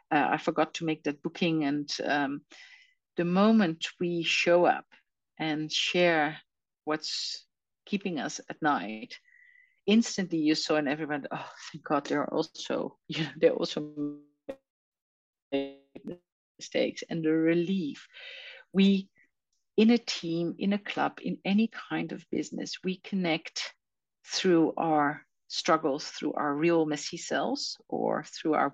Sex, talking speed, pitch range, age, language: female, 135 wpm, 160-215 Hz, 50-69, English